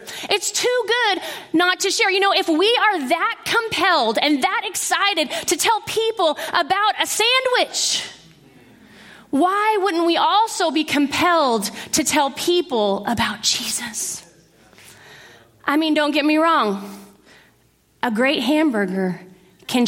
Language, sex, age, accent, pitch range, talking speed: English, female, 30-49, American, 310-415 Hz, 130 wpm